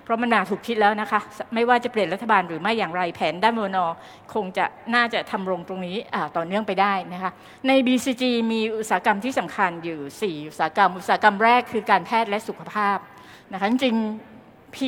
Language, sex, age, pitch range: English, female, 60-79, 185-235 Hz